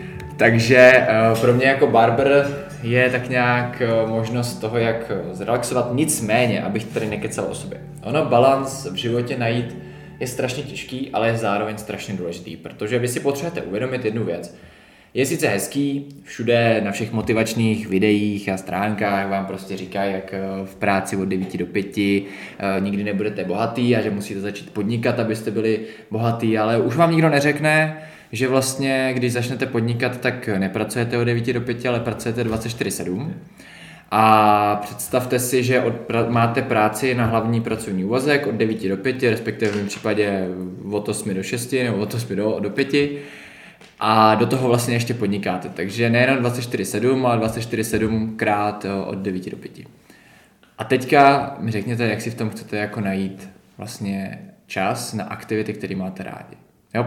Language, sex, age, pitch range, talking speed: Czech, male, 20-39, 105-125 Hz, 160 wpm